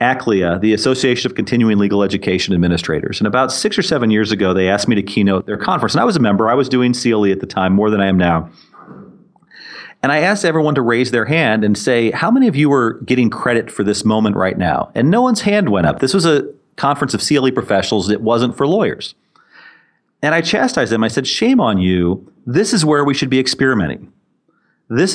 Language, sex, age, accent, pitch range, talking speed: English, male, 40-59, American, 105-145 Hz, 225 wpm